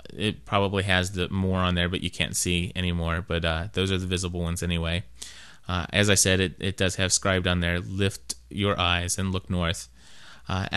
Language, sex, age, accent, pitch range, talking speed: English, male, 30-49, American, 90-105 Hz, 210 wpm